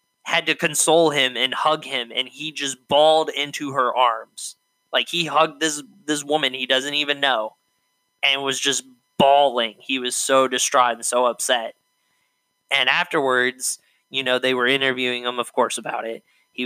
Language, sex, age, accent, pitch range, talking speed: English, male, 10-29, American, 120-140 Hz, 175 wpm